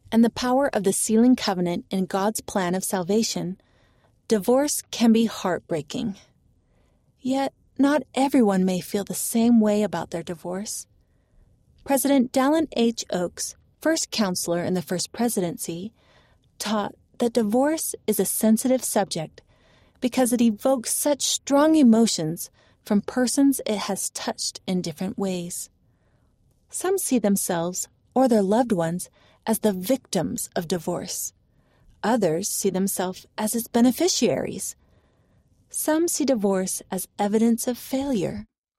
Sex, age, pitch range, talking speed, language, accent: female, 30-49, 185-250 Hz, 130 wpm, English, American